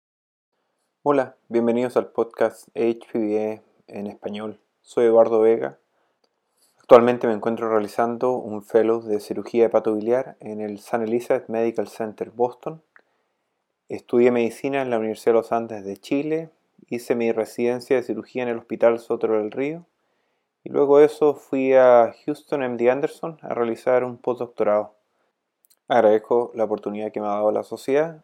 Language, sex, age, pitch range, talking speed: English, male, 20-39, 110-125 Hz, 145 wpm